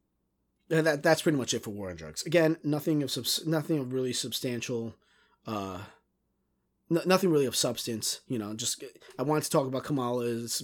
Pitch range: 110-140 Hz